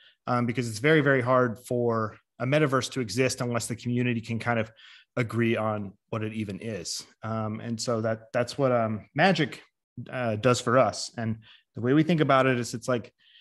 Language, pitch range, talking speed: English, 110-130 Hz, 200 wpm